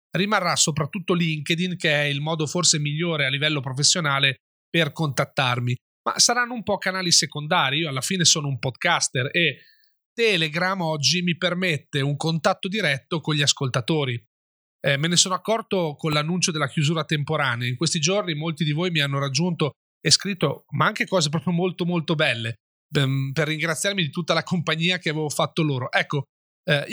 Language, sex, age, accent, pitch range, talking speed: Italian, male, 30-49, native, 150-185 Hz, 170 wpm